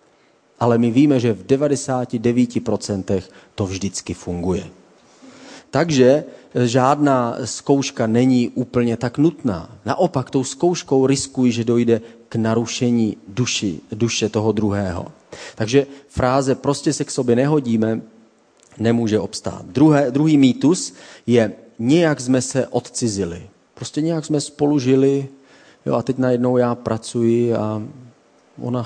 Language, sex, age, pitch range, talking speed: Czech, male, 30-49, 110-130 Hz, 120 wpm